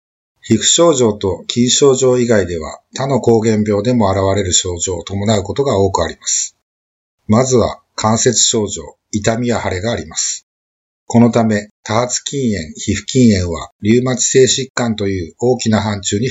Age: 50-69